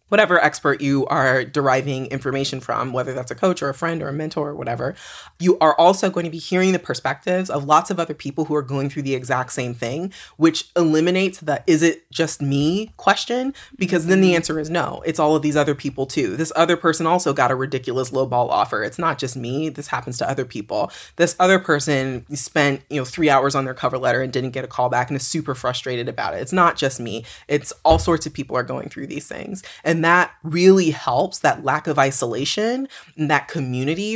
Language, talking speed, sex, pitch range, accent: English, 225 wpm, female, 135-170 Hz, American